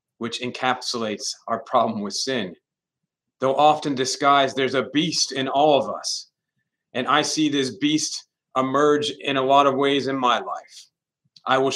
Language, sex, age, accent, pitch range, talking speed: English, male, 40-59, American, 125-150 Hz, 165 wpm